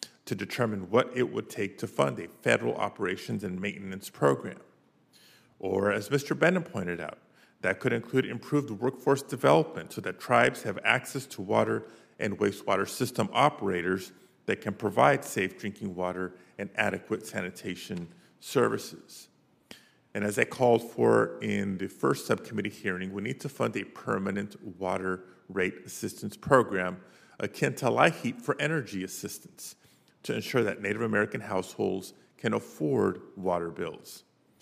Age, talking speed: 40-59, 145 wpm